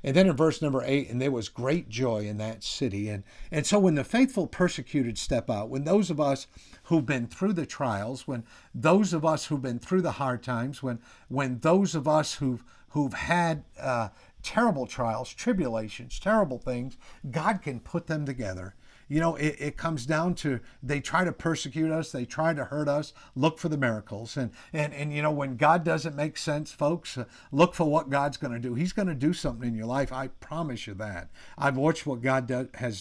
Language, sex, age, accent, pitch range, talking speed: English, male, 50-69, American, 125-155 Hz, 215 wpm